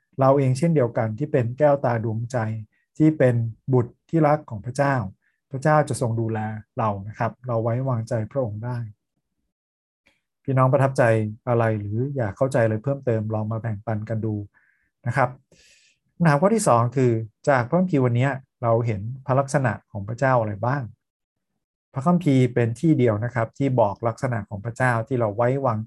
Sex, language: male, Thai